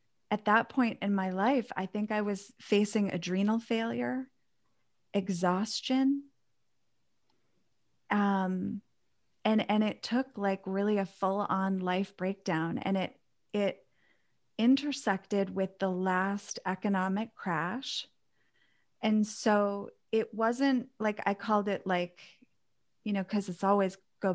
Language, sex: English, female